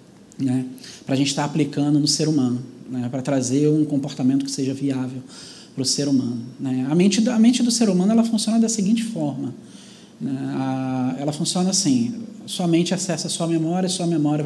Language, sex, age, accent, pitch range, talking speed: Portuguese, male, 20-39, Brazilian, 150-195 Hz, 180 wpm